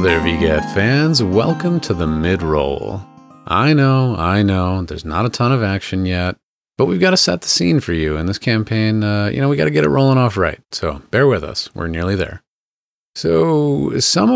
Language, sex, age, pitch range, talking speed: English, male, 30-49, 90-120 Hz, 215 wpm